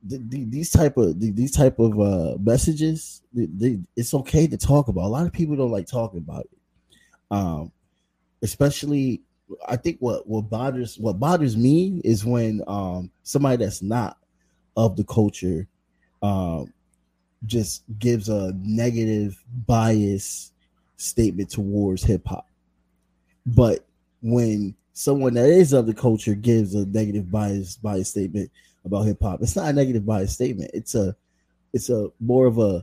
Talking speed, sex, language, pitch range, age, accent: 150 wpm, male, English, 100-130 Hz, 20-39, American